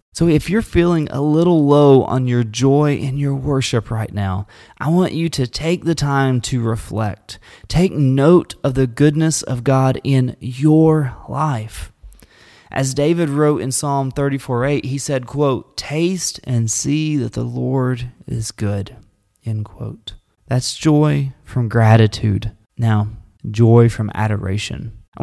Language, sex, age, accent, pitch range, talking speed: English, male, 30-49, American, 110-145 Hz, 150 wpm